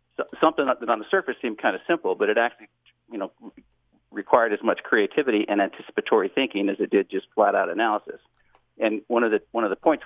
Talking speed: 215 wpm